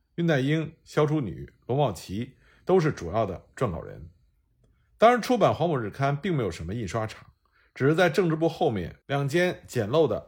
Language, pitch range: Chinese, 110-175 Hz